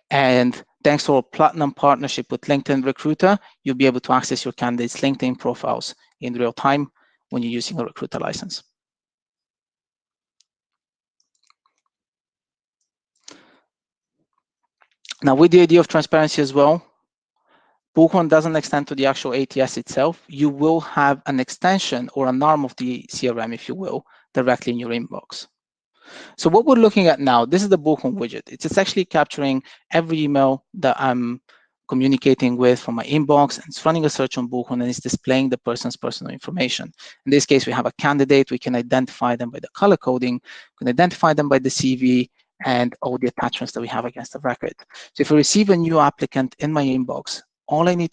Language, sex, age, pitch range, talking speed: English, male, 20-39, 125-150 Hz, 175 wpm